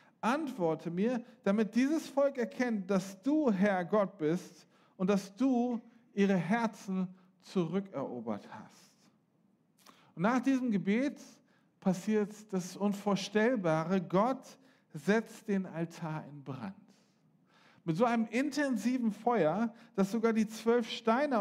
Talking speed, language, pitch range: 115 wpm, German, 190-230 Hz